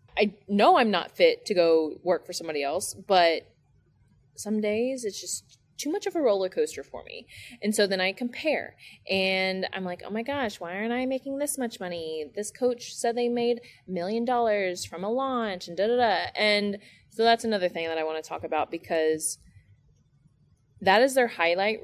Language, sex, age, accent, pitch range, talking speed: English, female, 20-39, American, 165-230 Hz, 200 wpm